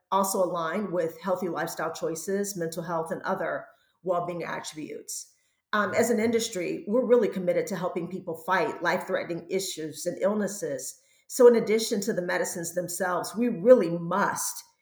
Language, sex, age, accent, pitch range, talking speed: English, female, 40-59, American, 170-200 Hz, 150 wpm